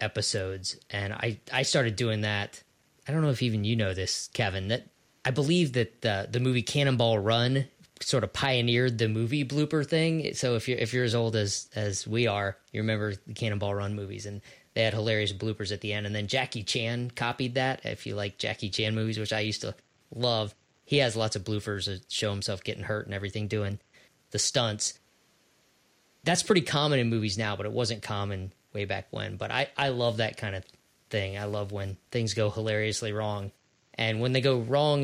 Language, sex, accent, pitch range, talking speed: English, male, American, 105-130 Hz, 210 wpm